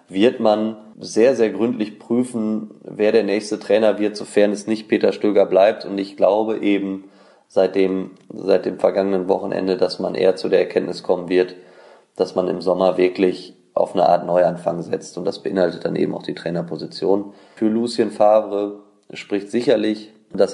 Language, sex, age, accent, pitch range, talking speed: German, male, 20-39, German, 95-115 Hz, 170 wpm